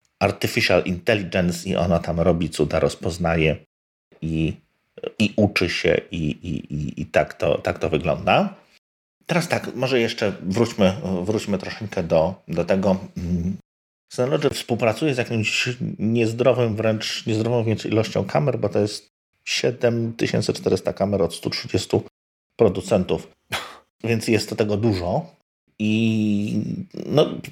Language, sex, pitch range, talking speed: Polish, male, 95-115 Hz, 120 wpm